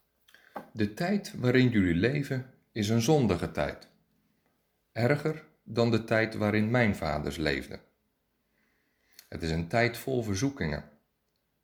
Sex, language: male, Dutch